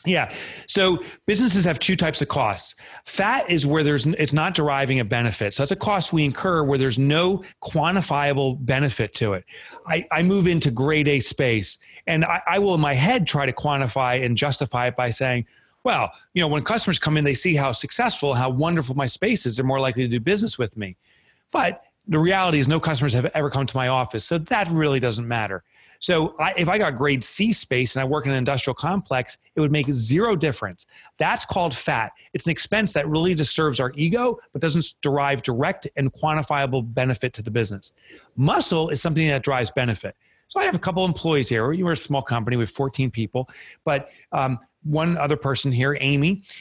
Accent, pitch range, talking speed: American, 130-165 Hz, 210 wpm